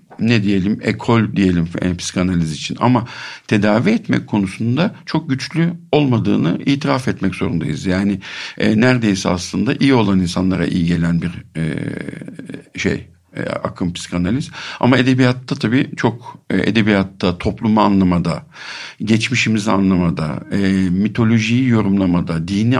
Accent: native